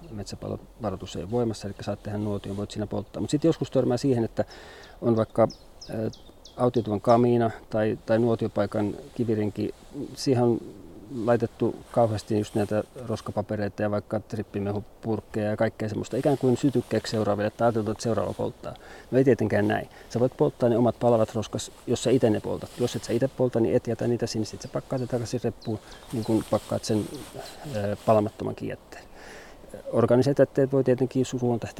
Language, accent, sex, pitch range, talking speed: Finnish, native, male, 110-125 Hz, 165 wpm